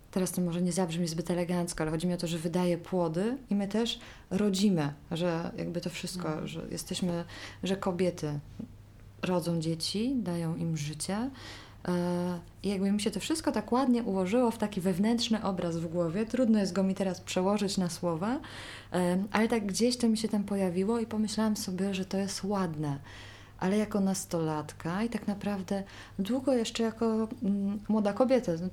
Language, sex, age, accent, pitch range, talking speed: Polish, female, 20-39, native, 170-215 Hz, 170 wpm